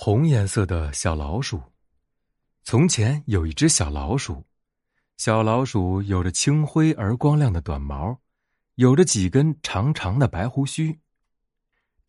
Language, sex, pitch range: Chinese, male, 90-145 Hz